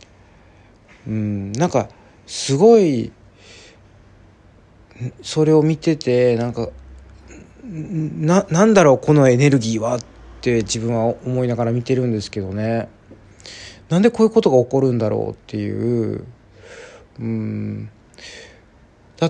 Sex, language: male, Japanese